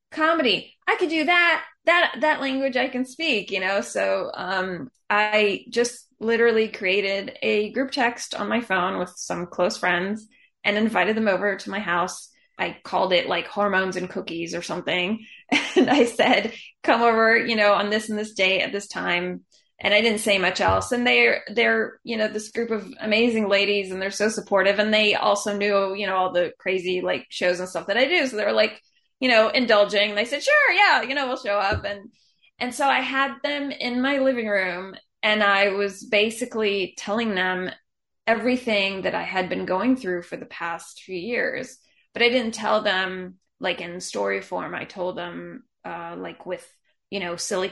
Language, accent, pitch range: English, American, 190-240 Hz